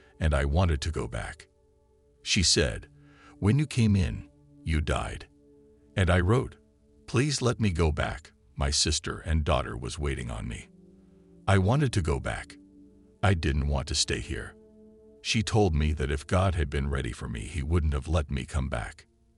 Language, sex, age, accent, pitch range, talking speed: English, male, 50-69, American, 75-105 Hz, 185 wpm